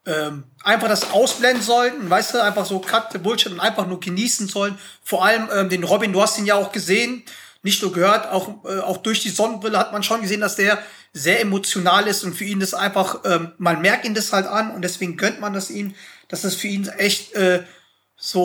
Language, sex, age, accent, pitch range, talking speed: German, male, 30-49, German, 185-220 Hz, 230 wpm